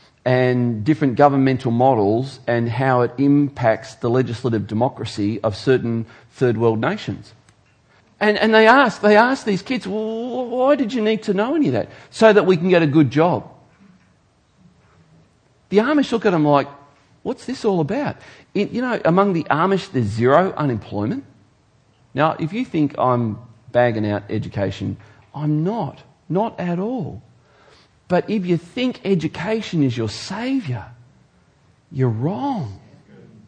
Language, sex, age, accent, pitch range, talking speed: English, male, 40-59, Australian, 125-200 Hz, 150 wpm